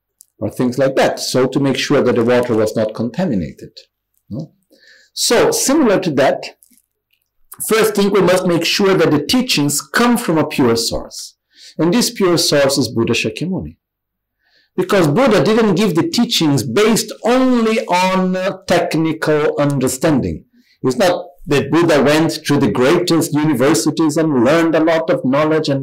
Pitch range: 125-165 Hz